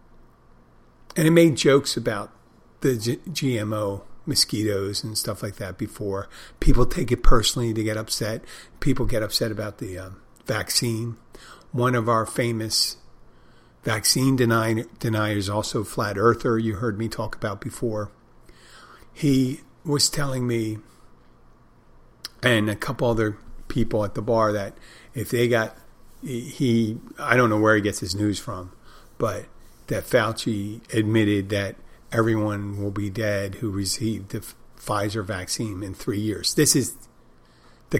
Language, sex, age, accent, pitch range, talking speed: English, male, 50-69, American, 105-120 Hz, 140 wpm